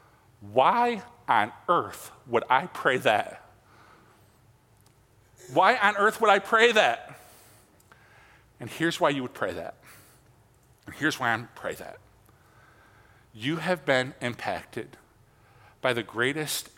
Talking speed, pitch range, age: 125 wpm, 110-135 Hz, 50-69